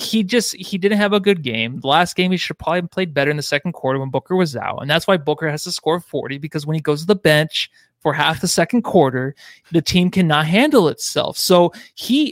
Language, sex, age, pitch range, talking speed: English, male, 20-39, 150-195 Hz, 250 wpm